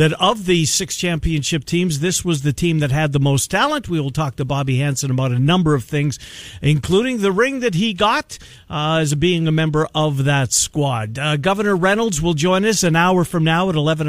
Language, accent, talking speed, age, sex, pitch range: English, American, 220 wpm, 50-69, male, 140-175 Hz